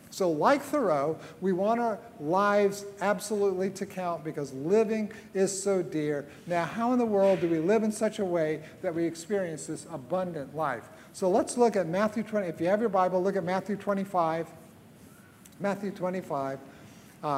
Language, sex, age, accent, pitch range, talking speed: English, male, 50-69, American, 165-215 Hz, 175 wpm